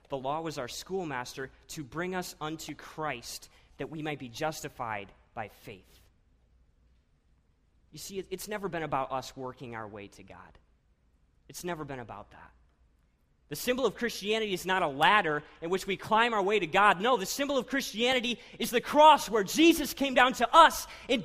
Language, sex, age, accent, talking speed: English, male, 30-49, American, 185 wpm